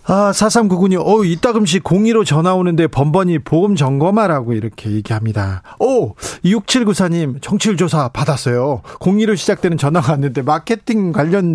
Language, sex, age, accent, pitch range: Korean, male, 40-59, native, 140-195 Hz